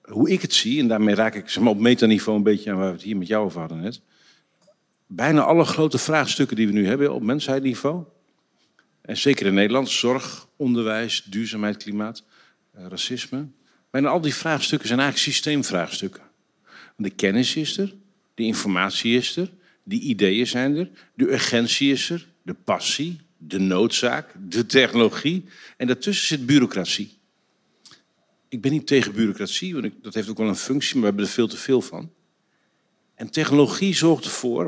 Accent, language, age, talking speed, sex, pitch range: Dutch, Dutch, 50-69, 170 wpm, male, 105-150 Hz